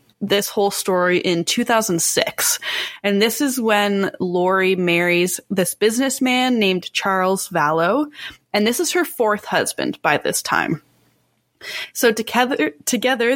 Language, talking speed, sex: English, 125 wpm, female